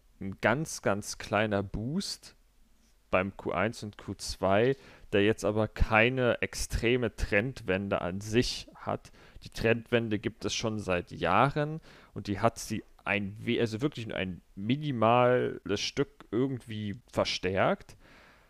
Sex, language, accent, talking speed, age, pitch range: male, German, German, 125 wpm, 40-59, 95-120 Hz